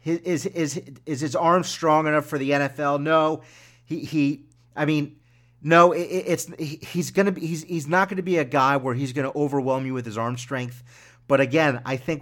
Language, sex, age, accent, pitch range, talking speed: English, male, 40-59, American, 125-160 Hz, 210 wpm